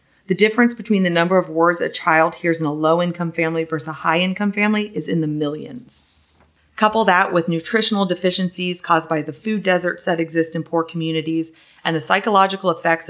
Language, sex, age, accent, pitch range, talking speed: English, female, 30-49, American, 155-185 Hz, 190 wpm